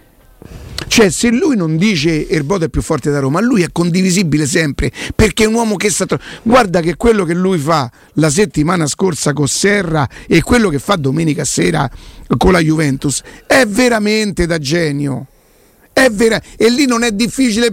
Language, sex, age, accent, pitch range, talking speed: Italian, male, 50-69, native, 165-220 Hz, 180 wpm